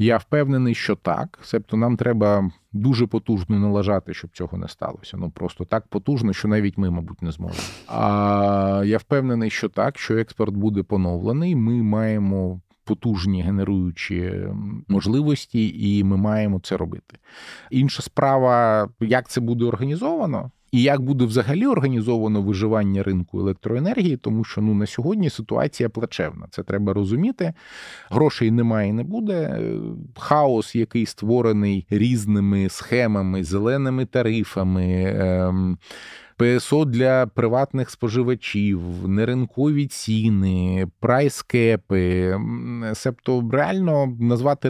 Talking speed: 120 wpm